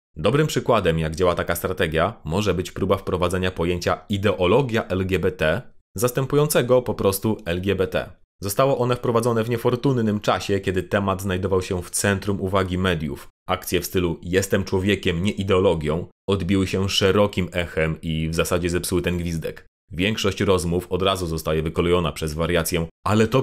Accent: native